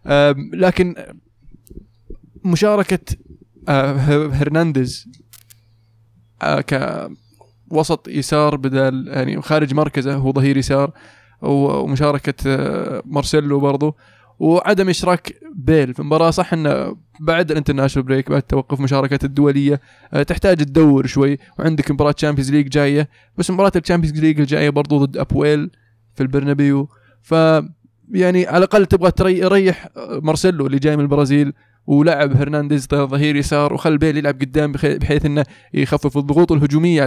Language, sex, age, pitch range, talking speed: Arabic, male, 20-39, 135-160 Hz, 115 wpm